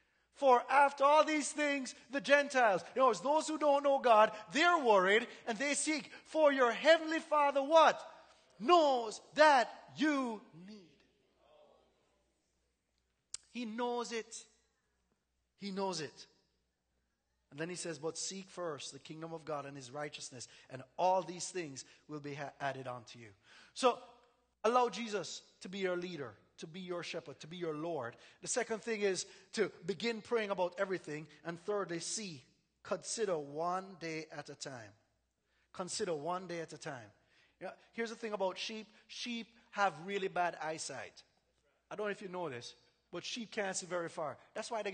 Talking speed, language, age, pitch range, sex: 165 wpm, English, 30-49, 160-230 Hz, male